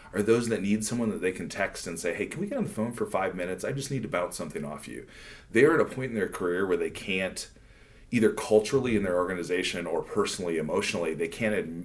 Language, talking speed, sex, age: English, 250 wpm, male, 40-59